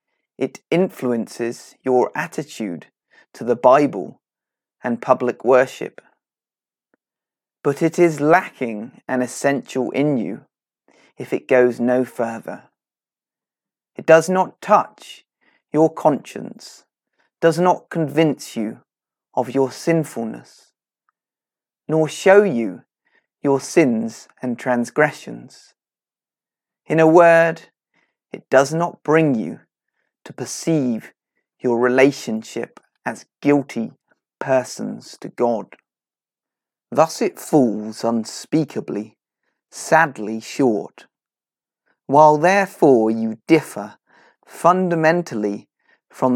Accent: British